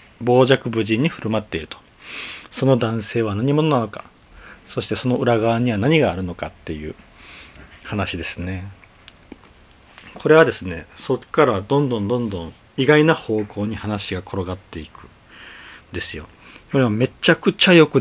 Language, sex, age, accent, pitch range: Japanese, male, 40-59, native, 95-130 Hz